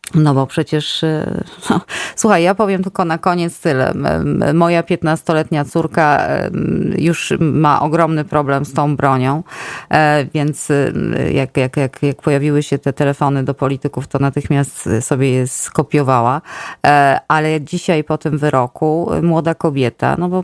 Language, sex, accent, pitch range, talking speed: Polish, female, native, 135-175 Hz, 125 wpm